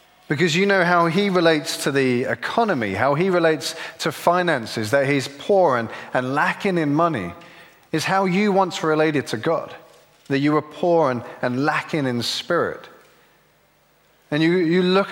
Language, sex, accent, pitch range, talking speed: English, male, British, 140-175 Hz, 165 wpm